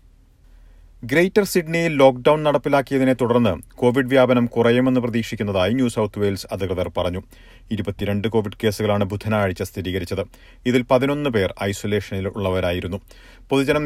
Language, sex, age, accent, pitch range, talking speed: Malayalam, male, 40-59, native, 100-130 Hz, 100 wpm